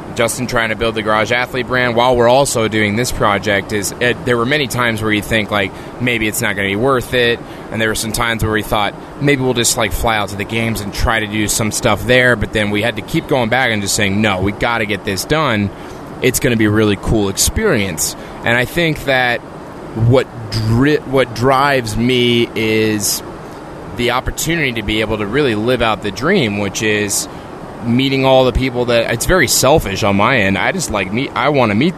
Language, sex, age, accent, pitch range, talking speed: English, male, 20-39, American, 105-125 Hz, 225 wpm